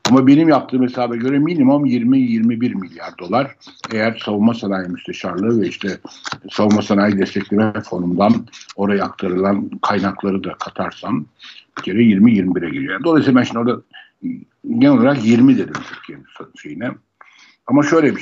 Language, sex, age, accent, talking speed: Turkish, male, 60-79, native, 130 wpm